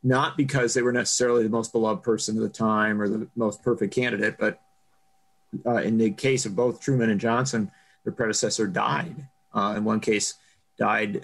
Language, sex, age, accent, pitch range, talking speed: English, male, 40-59, American, 110-145 Hz, 185 wpm